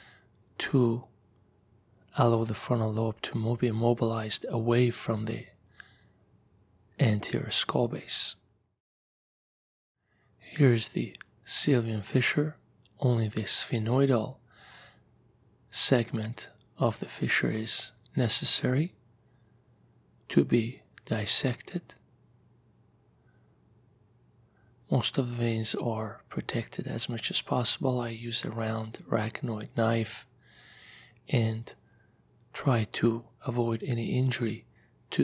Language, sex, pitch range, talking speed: English, male, 115-125 Hz, 90 wpm